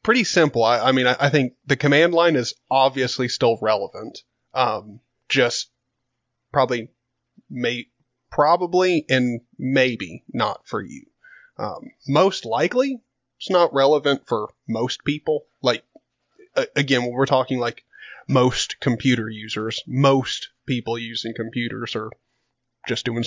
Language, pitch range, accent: English, 115-130 Hz, American